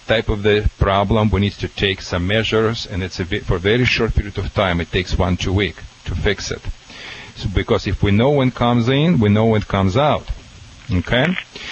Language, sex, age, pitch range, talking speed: English, male, 40-59, 105-135 Hz, 230 wpm